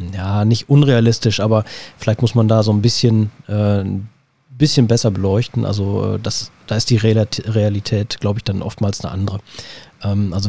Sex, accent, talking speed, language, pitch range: male, German, 155 wpm, German, 105-120 Hz